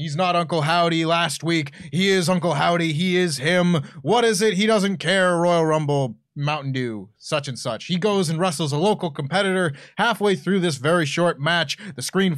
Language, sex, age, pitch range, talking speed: English, male, 20-39, 135-175 Hz, 200 wpm